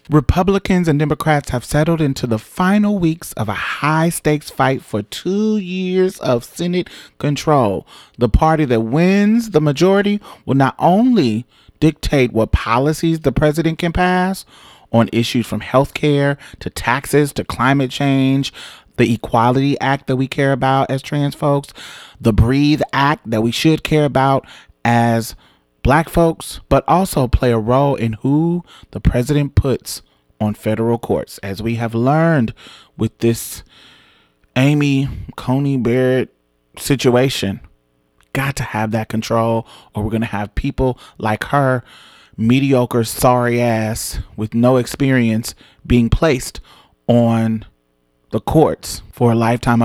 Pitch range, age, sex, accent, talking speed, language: 115-150 Hz, 30-49, male, American, 140 wpm, English